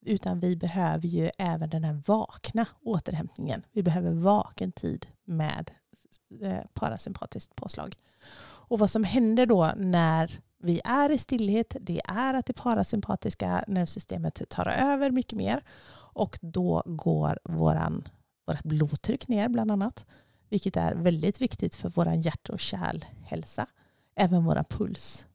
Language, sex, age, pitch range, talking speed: Swedish, female, 30-49, 170-220 Hz, 135 wpm